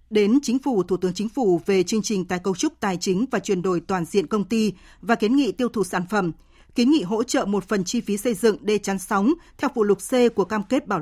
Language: Vietnamese